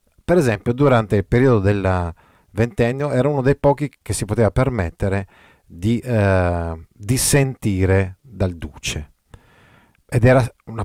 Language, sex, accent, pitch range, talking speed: Italian, male, native, 90-120 Hz, 135 wpm